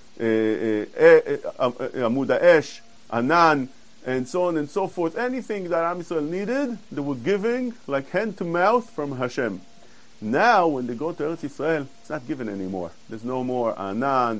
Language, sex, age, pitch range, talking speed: English, male, 40-59, 130-200 Hz, 165 wpm